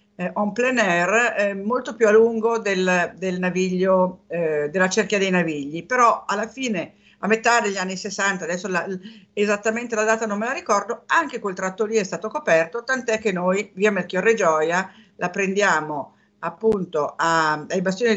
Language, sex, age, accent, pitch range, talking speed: Italian, female, 50-69, native, 180-230 Hz, 175 wpm